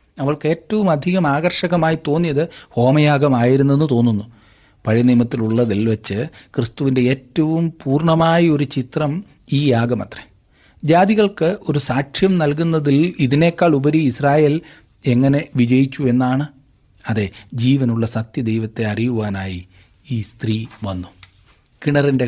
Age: 40-59